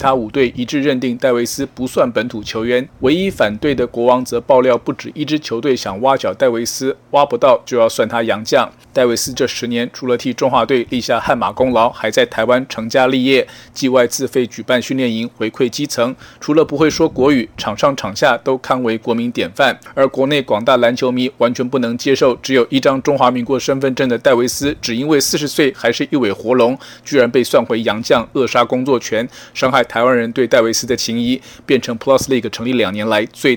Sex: male